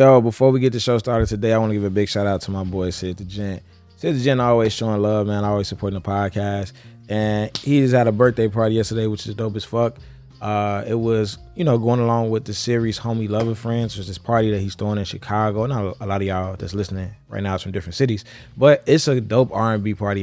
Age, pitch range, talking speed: 20-39, 95-120 Hz, 260 wpm